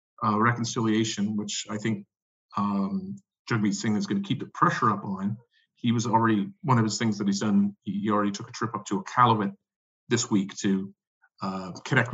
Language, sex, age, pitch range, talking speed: English, male, 40-59, 105-130 Hz, 200 wpm